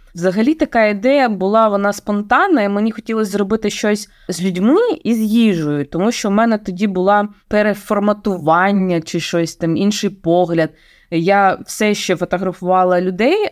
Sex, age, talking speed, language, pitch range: female, 20-39, 145 wpm, Ukrainian, 165-215 Hz